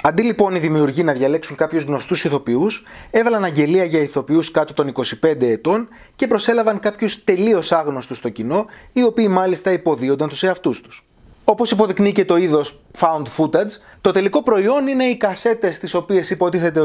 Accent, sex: native, male